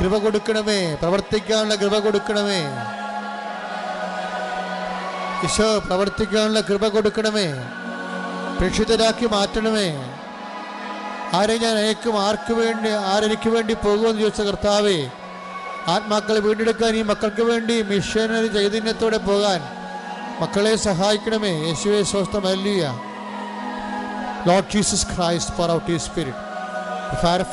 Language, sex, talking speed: English, male, 35 wpm